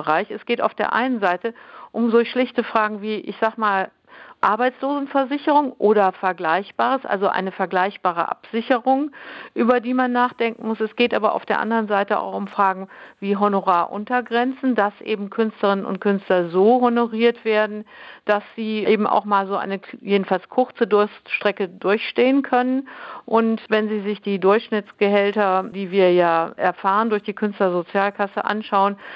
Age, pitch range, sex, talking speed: 60-79, 195-235 Hz, female, 150 wpm